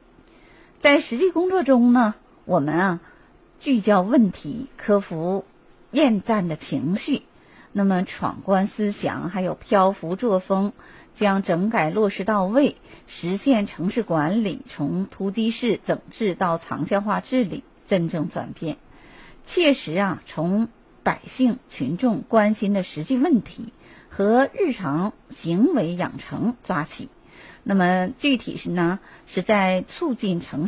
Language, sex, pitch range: Chinese, female, 180-245 Hz